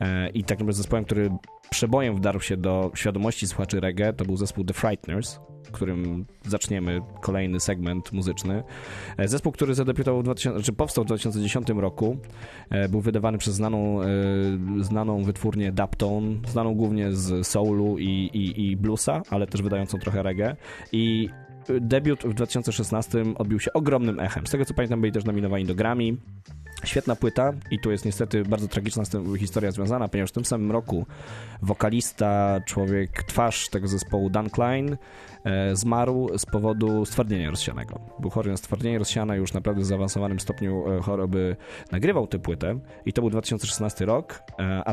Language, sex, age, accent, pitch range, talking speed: English, male, 20-39, Polish, 95-115 Hz, 150 wpm